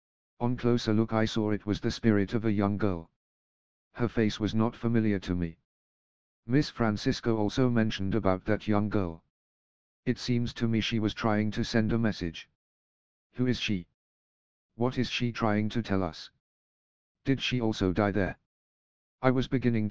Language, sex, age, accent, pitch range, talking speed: English, male, 50-69, British, 105-115 Hz, 170 wpm